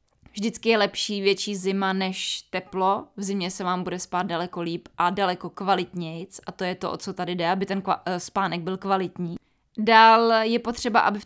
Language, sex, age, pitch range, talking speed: Czech, female, 20-39, 185-215 Hz, 195 wpm